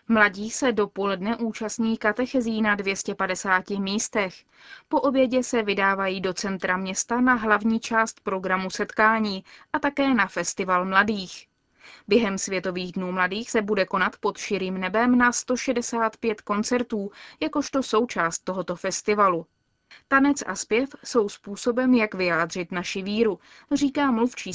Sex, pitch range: female, 195-250 Hz